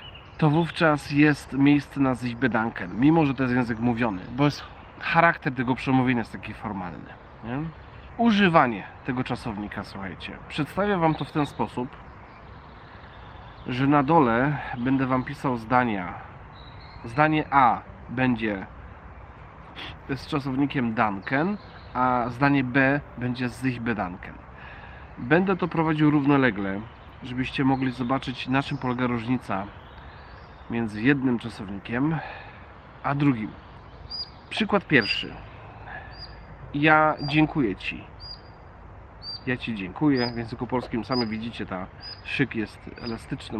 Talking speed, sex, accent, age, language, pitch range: 115 wpm, male, native, 40-59, Polish, 105-145 Hz